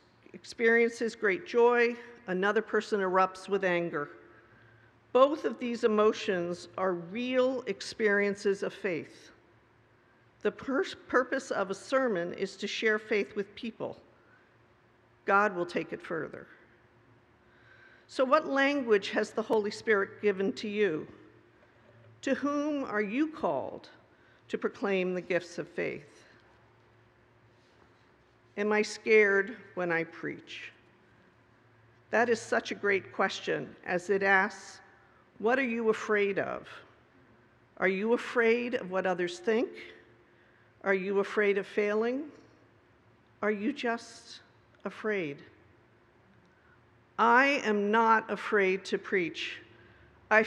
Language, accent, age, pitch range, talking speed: English, American, 50-69, 190-240 Hz, 115 wpm